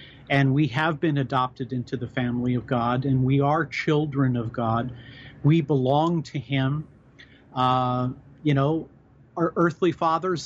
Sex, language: male, English